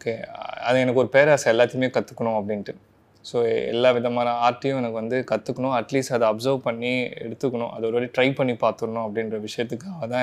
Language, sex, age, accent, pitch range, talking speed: Tamil, male, 20-39, native, 115-130 Hz, 170 wpm